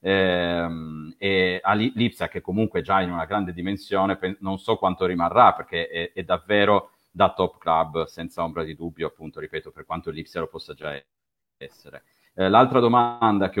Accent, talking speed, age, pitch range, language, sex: native, 170 wpm, 40-59, 85-95 Hz, Italian, male